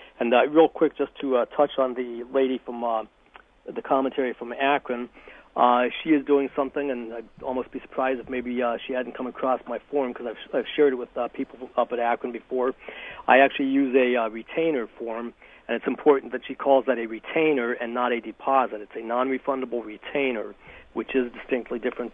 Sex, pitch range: male, 120-135 Hz